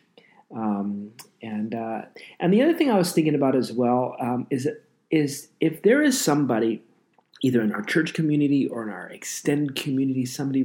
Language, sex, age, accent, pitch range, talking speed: English, male, 30-49, American, 120-145 Hz, 175 wpm